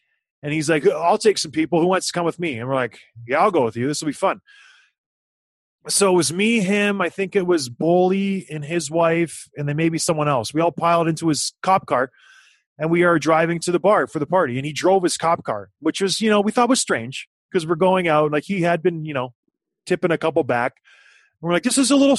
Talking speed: 255 wpm